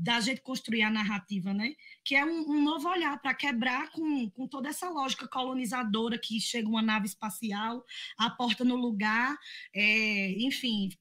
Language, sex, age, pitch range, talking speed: Portuguese, female, 20-39, 215-280 Hz, 170 wpm